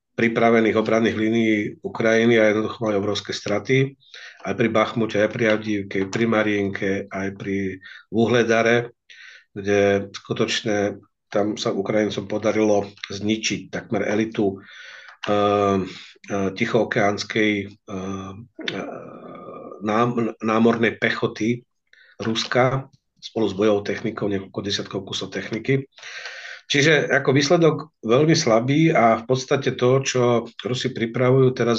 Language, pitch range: Slovak, 105-120 Hz